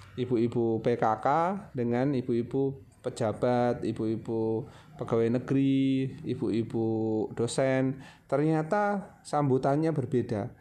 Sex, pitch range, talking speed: male, 115-140 Hz, 75 wpm